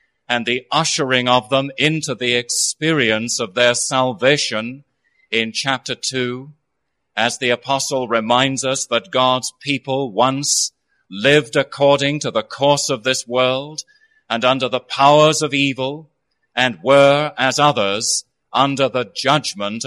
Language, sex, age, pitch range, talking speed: English, male, 30-49, 120-150 Hz, 135 wpm